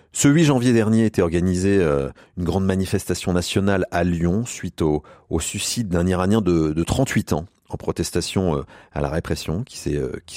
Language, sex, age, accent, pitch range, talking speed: French, male, 40-59, French, 85-115 Hz, 175 wpm